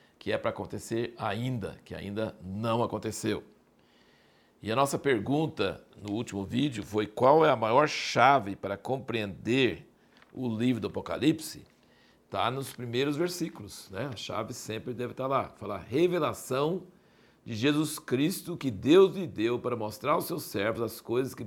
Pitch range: 120-165 Hz